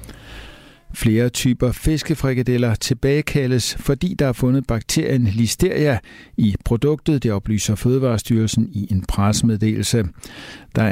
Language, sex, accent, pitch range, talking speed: Danish, male, native, 110-135 Hz, 105 wpm